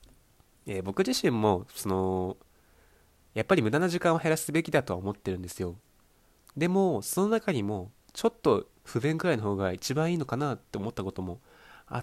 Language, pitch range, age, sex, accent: Japanese, 95-140 Hz, 20-39, male, native